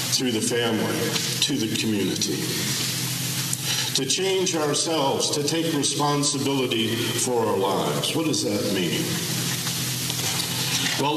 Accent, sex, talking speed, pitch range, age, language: American, male, 105 wpm, 125-160 Hz, 50-69, English